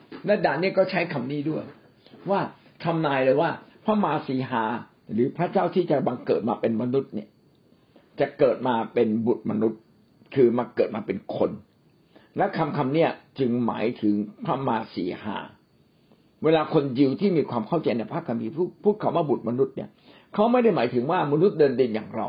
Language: Thai